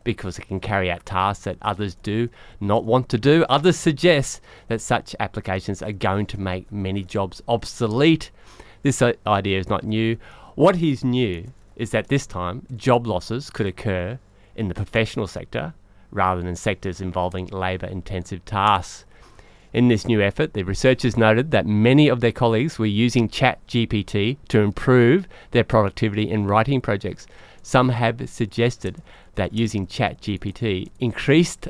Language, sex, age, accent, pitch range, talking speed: English, male, 30-49, Australian, 100-130 Hz, 155 wpm